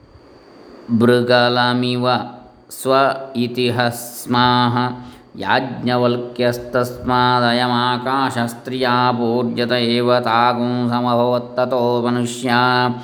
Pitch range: 120-125 Hz